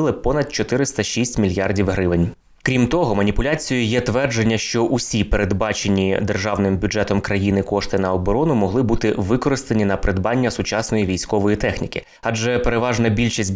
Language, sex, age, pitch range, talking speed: Ukrainian, male, 20-39, 100-120 Hz, 130 wpm